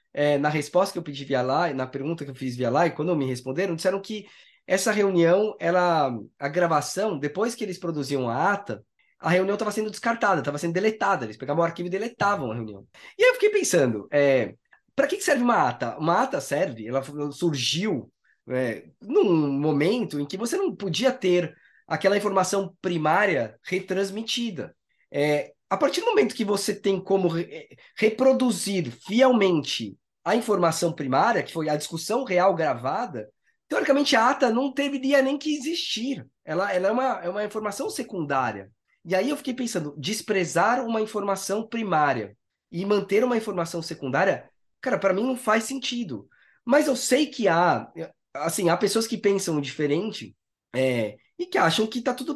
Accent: Brazilian